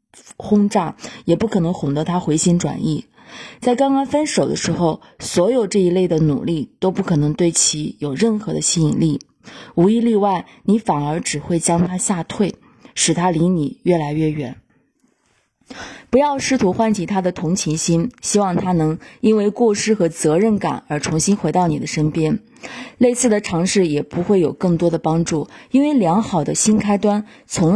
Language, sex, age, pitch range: Chinese, female, 20-39, 160-225 Hz